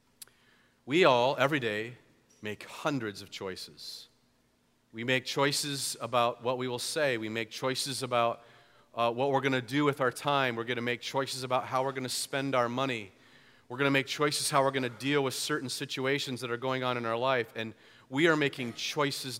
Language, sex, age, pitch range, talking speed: English, male, 40-59, 125-150 Hz, 205 wpm